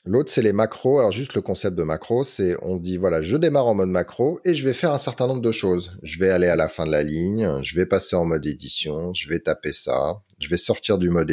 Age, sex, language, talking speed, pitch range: 30-49, male, French, 280 wpm, 85-115 Hz